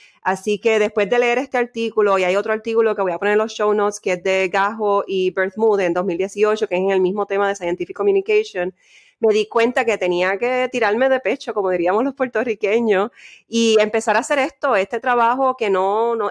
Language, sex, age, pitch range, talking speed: English, female, 30-49, 190-230 Hz, 220 wpm